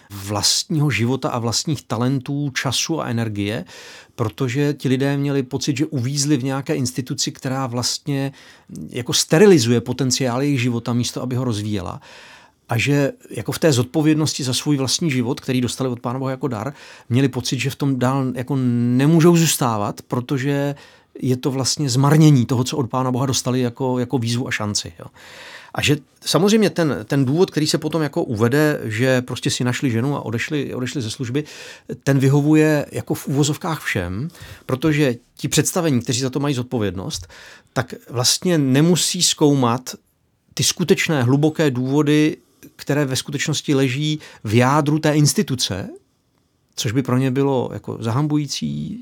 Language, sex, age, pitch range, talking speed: Czech, male, 40-59, 125-150 Hz, 160 wpm